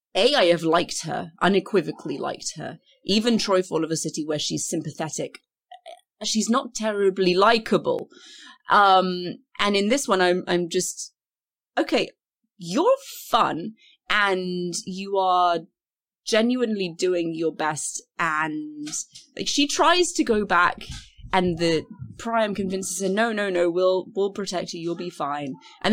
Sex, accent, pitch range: female, British, 165-235 Hz